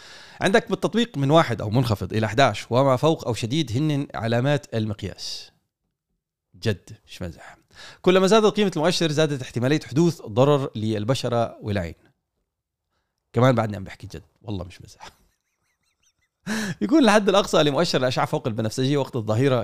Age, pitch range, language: 30-49, 105-155 Hz, Arabic